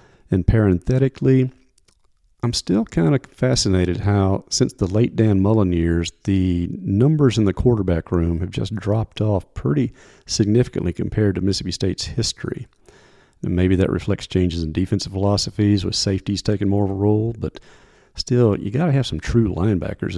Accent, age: American, 40-59